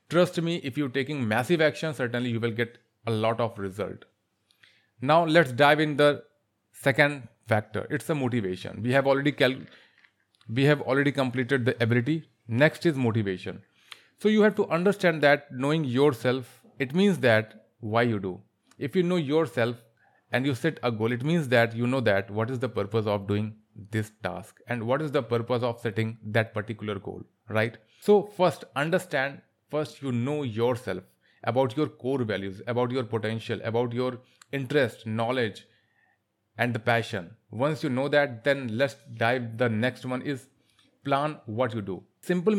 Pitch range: 115-145 Hz